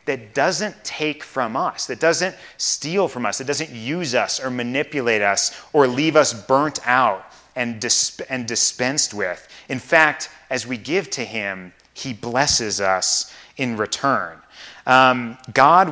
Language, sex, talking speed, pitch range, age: English, male, 150 wpm, 110-145 Hz, 30-49